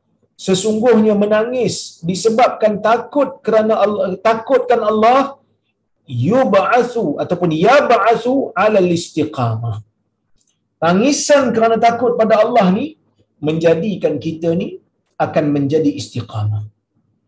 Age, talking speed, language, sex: 50-69, 85 wpm, Malayalam, male